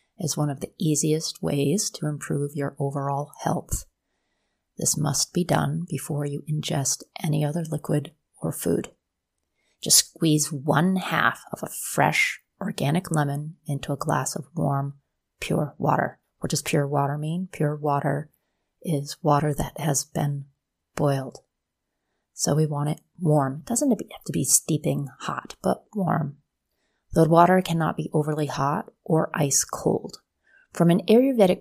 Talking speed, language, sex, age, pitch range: 150 wpm, English, female, 30-49, 145-165 Hz